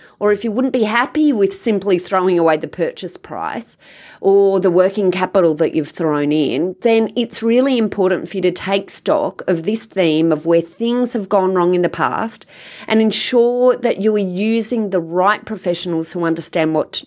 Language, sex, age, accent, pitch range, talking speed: English, female, 30-49, Australian, 175-225 Hz, 190 wpm